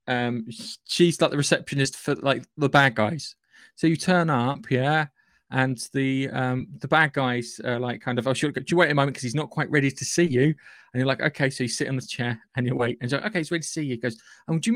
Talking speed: 280 wpm